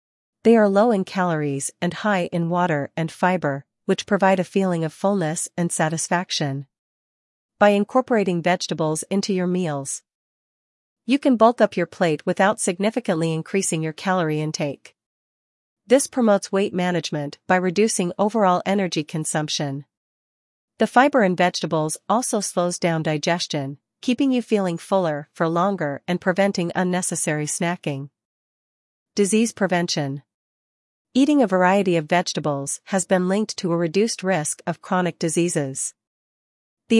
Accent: American